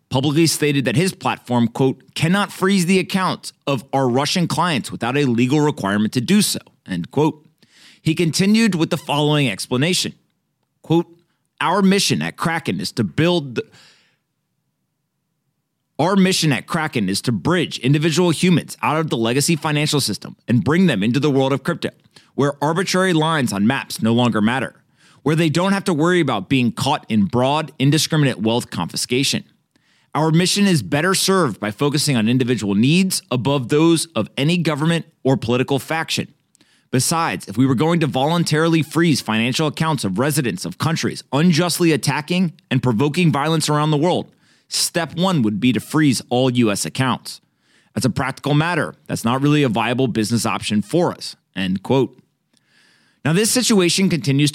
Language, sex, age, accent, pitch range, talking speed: English, male, 30-49, American, 130-170 Hz, 165 wpm